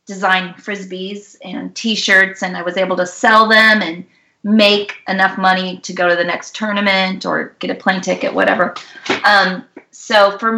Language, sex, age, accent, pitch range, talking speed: English, female, 30-49, American, 180-205 Hz, 170 wpm